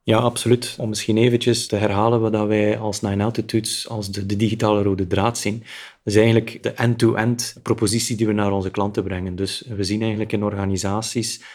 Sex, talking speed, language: male, 190 wpm, Dutch